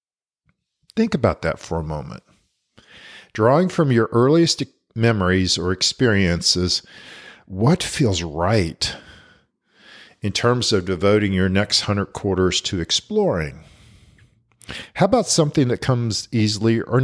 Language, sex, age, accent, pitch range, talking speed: English, male, 50-69, American, 95-125 Hz, 115 wpm